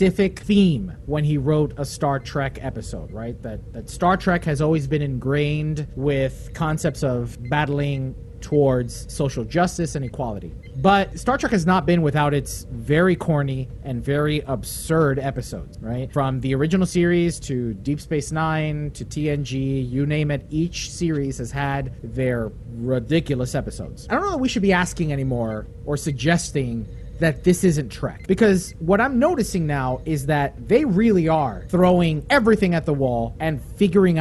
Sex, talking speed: male, 165 wpm